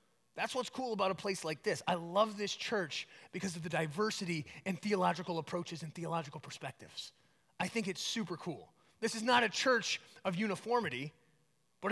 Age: 30-49